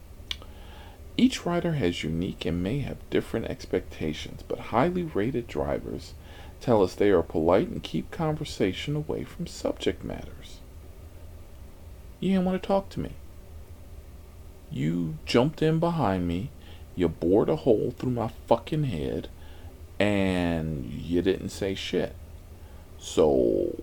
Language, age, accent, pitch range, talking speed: English, 40-59, American, 80-110 Hz, 130 wpm